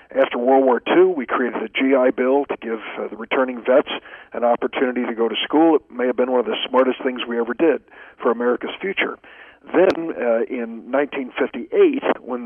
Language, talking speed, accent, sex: English, 195 wpm, American, male